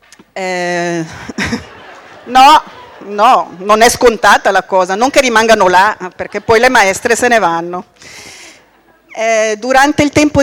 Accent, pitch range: native, 190-230 Hz